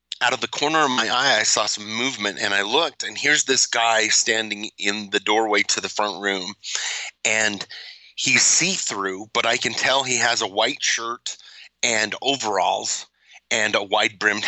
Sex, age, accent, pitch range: male, 30-49, American, 100-115 Hz